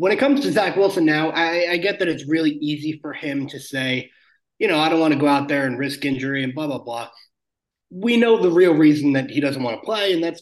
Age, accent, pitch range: 20-39, American, 140-195 Hz